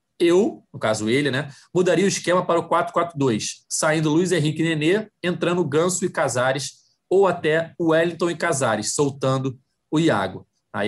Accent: Brazilian